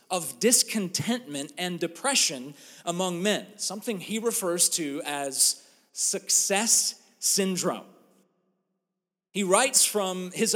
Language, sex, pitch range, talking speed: English, male, 185-235 Hz, 95 wpm